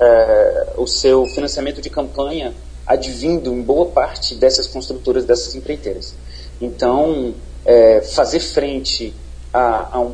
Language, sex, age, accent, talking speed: Portuguese, male, 30-49, Brazilian, 125 wpm